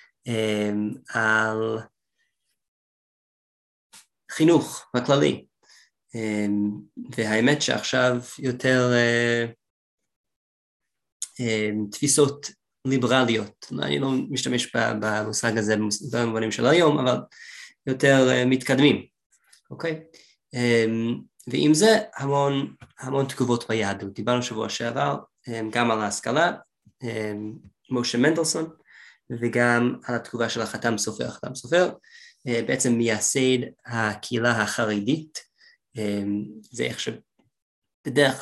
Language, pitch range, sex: Hebrew, 110-140 Hz, male